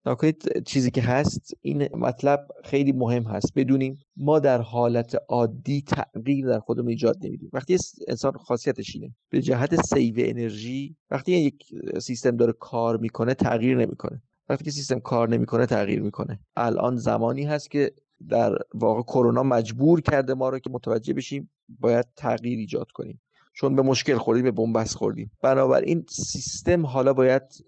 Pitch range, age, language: 120-145 Hz, 30-49, Persian